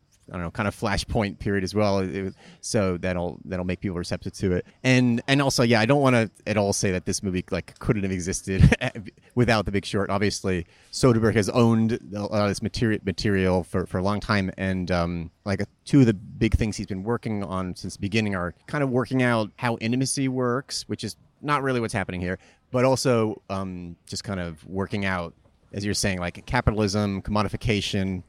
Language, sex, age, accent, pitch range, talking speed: English, male, 30-49, American, 95-115 Hz, 210 wpm